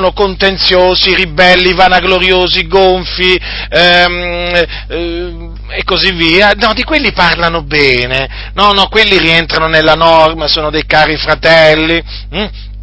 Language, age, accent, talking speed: Italian, 40-59, native, 120 wpm